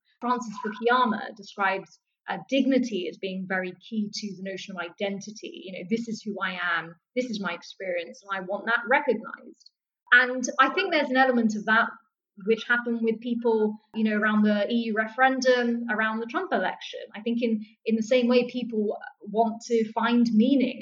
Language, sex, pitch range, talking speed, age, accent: English, female, 205-245 Hz, 185 wpm, 20-39, British